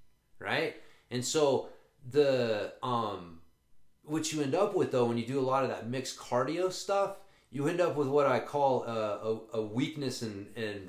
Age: 30-49